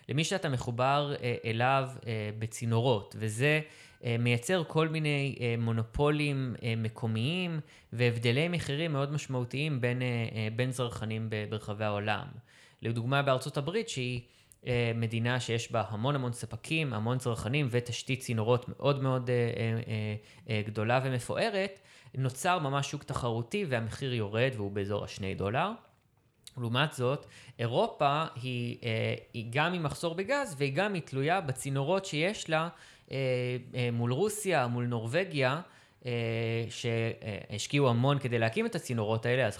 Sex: male